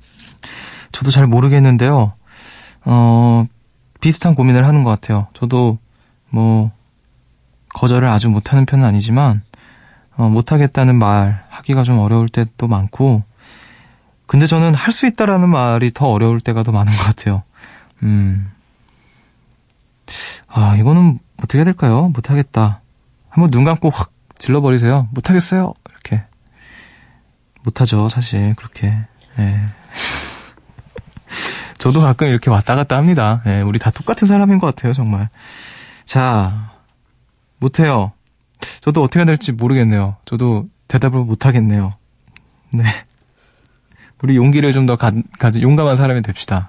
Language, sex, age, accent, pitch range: Korean, male, 20-39, native, 110-135 Hz